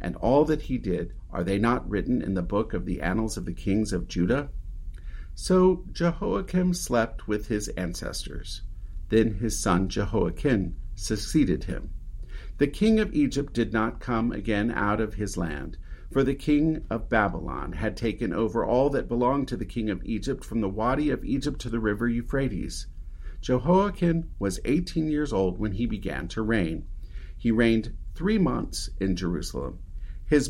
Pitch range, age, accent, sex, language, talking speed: 90-135 Hz, 50-69, American, male, English, 170 wpm